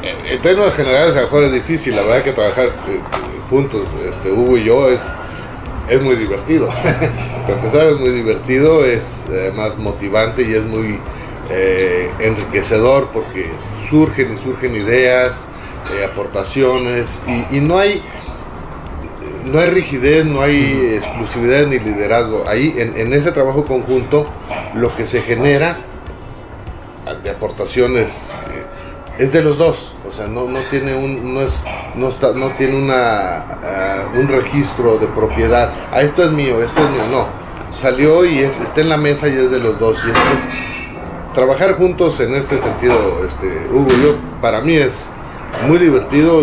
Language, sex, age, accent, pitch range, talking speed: Spanish, male, 40-59, Mexican, 105-140 Hz, 160 wpm